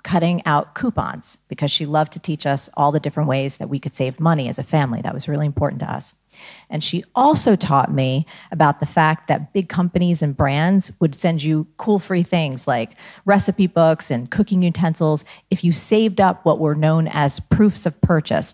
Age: 40-59